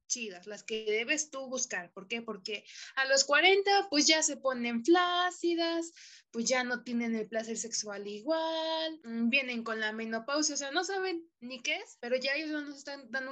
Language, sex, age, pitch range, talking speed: Spanish, female, 20-39, 245-310 Hz, 190 wpm